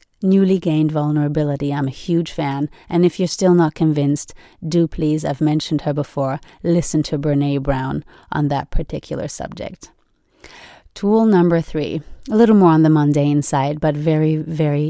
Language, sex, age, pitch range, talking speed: English, female, 30-49, 150-170 Hz, 160 wpm